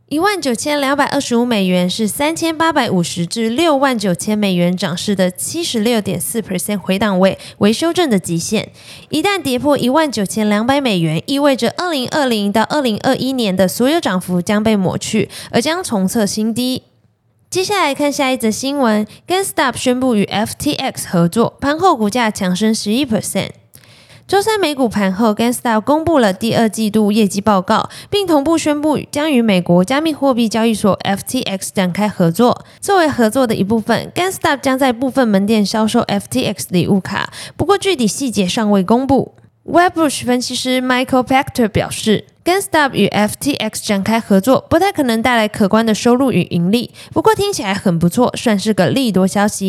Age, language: 20-39, Chinese